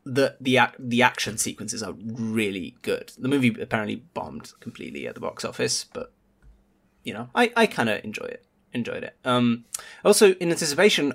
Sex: male